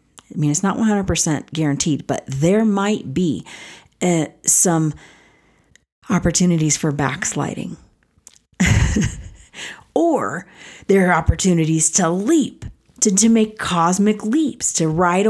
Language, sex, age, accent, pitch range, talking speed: English, female, 40-59, American, 160-200 Hz, 110 wpm